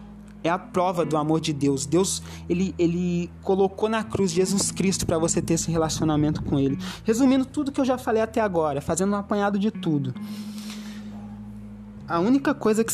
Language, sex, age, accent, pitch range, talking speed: Portuguese, male, 20-39, Brazilian, 155-210 Hz, 180 wpm